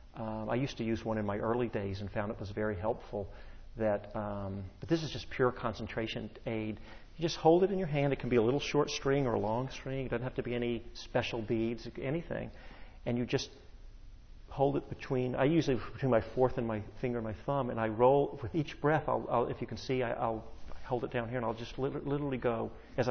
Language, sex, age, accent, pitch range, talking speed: English, male, 40-59, American, 110-130 Hz, 240 wpm